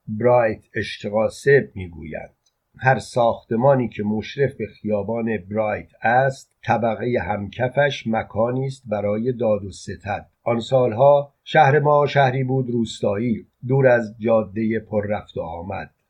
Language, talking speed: Persian, 110 wpm